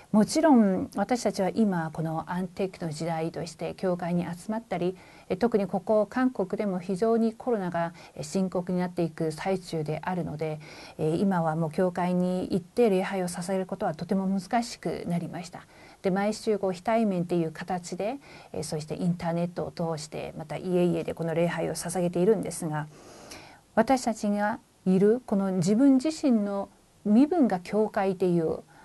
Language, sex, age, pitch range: Korean, female, 40-59, 175-230 Hz